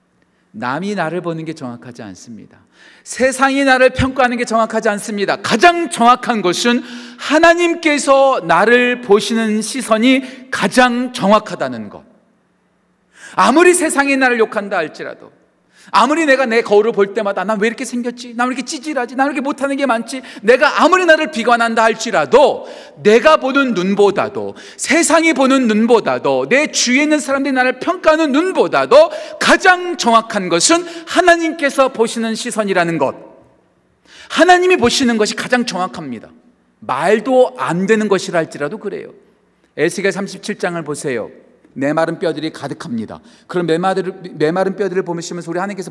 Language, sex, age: Korean, male, 40-59